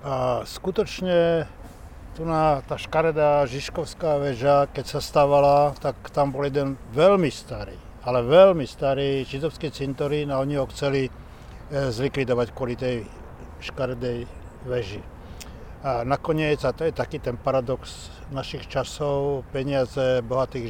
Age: 60-79